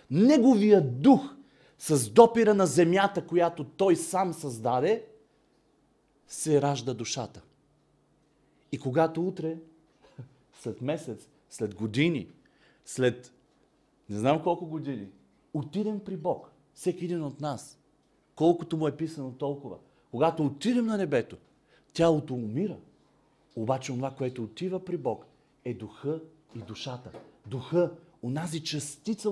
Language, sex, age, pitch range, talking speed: Bulgarian, male, 40-59, 135-195 Hz, 115 wpm